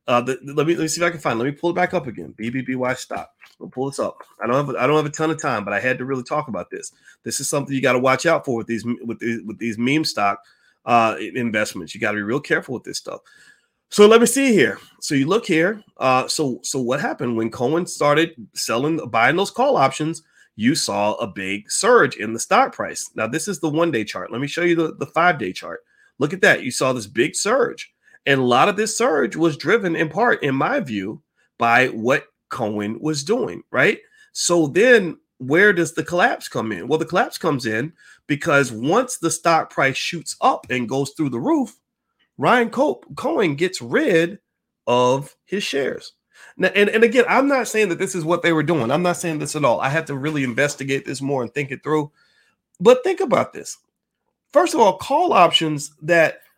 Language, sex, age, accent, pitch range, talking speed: English, male, 30-49, American, 125-175 Hz, 230 wpm